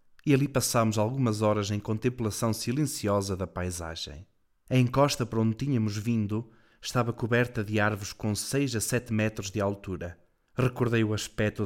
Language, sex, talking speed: Portuguese, male, 155 wpm